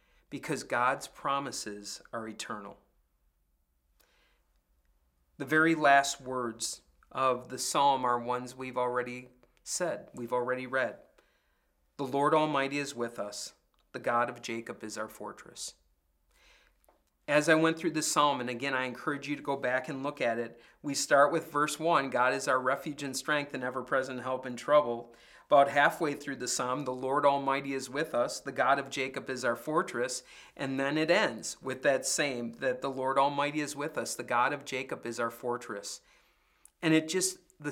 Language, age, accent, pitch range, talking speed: English, 40-59, American, 125-150 Hz, 175 wpm